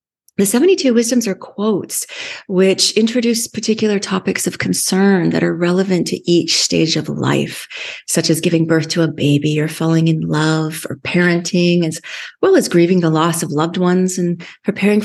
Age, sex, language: 30-49, female, English